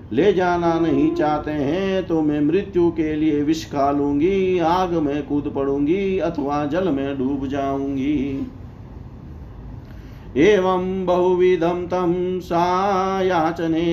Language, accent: Hindi, native